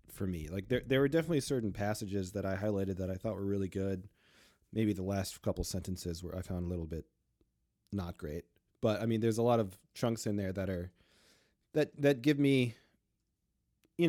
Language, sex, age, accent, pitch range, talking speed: English, male, 20-39, American, 95-115 Hz, 205 wpm